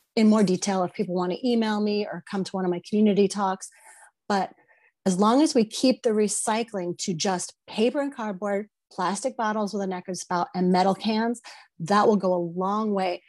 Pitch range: 180-215 Hz